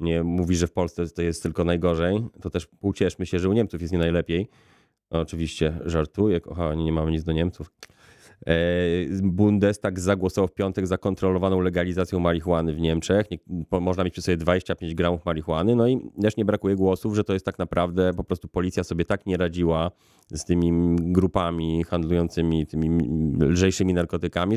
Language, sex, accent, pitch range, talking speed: Polish, male, native, 85-110 Hz, 175 wpm